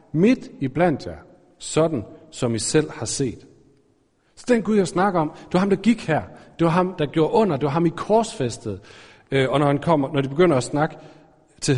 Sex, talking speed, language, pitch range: male, 220 wpm, Danish, 140-190 Hz